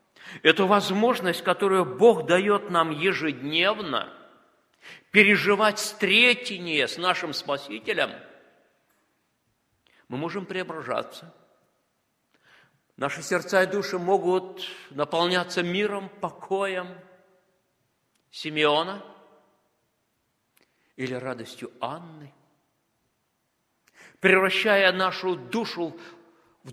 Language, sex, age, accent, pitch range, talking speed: Russian, male, 50-69, native, 135-200 Hz, 70 wpm